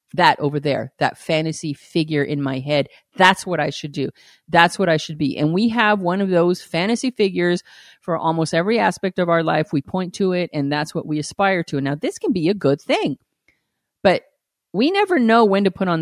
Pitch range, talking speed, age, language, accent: 145-180 Hz, 225 wpm, 30-49, English, American